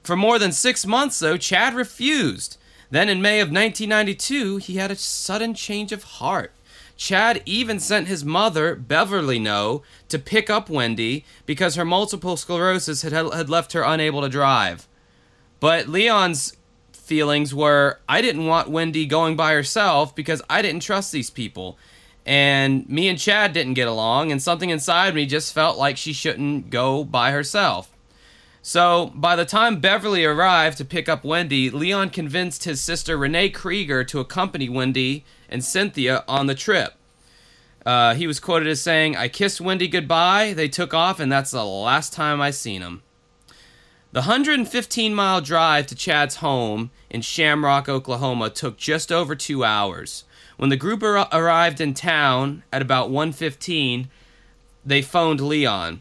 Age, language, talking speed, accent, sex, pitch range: 20-39, English, 160 wpm, American, male, 135-185 Hz